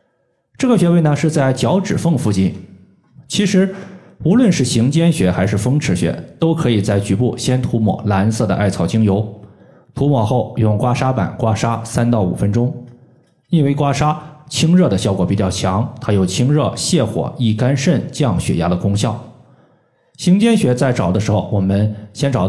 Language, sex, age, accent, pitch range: Chinese, male, 20-39, native, 105-145 Hz